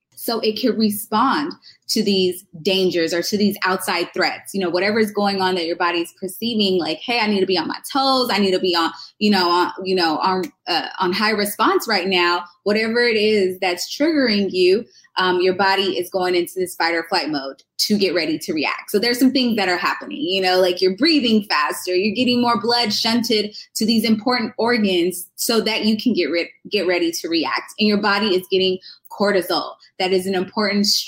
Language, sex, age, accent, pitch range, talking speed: English, female, 20-39, American, 190-250 Hz, 215 wpm